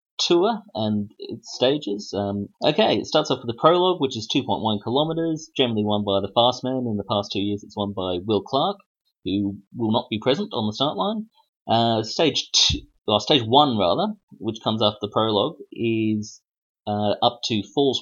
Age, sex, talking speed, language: 30-49, male, 195 wpm, English